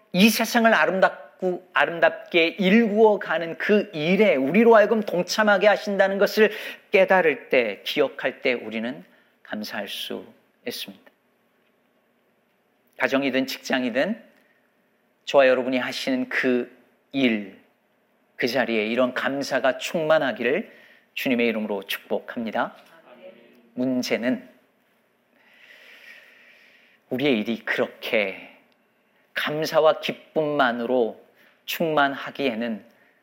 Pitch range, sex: 140-220 Hz, male